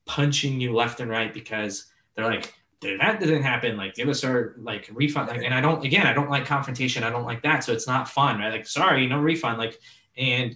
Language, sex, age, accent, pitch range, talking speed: English, male, 20-39, American, 115-145 Hz, 235 wpm